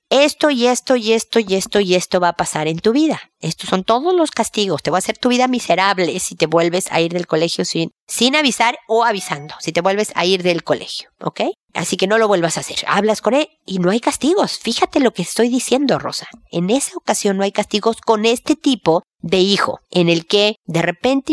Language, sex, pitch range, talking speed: Spanish, female, 175-230 Hz, 235 wpm